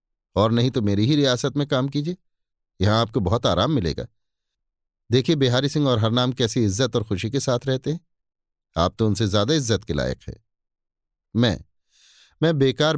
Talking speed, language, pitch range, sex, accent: 175 wpm, Hindi, 105-140 Hz, male, native